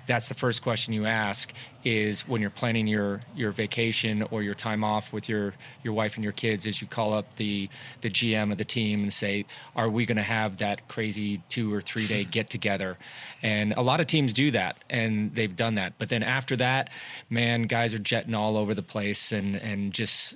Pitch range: 105-120 Hz